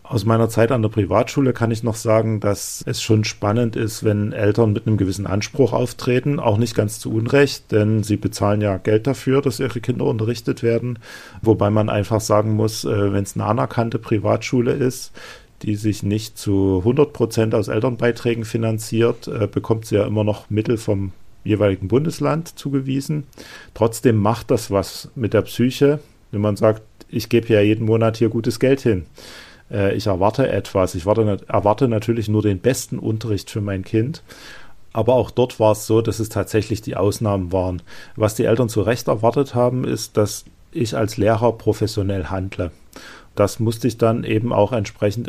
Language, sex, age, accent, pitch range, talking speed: German, male, 40-59, German, 105-120 Hz, 175 wpm